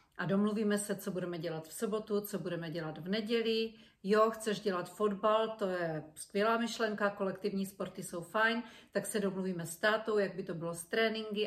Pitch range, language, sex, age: 190-225 Hz, Czech, female, 40-59